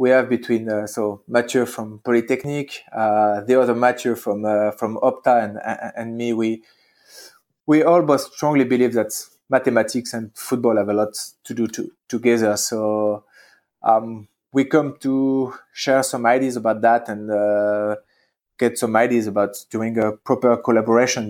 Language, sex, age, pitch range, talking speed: English, male, 20-39, 110-130 Hz, 160 wpm